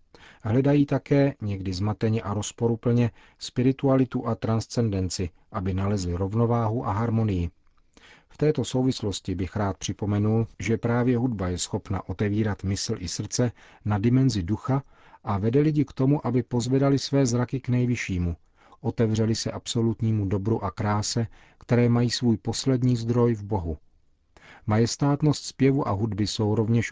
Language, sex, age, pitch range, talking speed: Czech, male, 40-59, 100-120 Hz, 140 wpm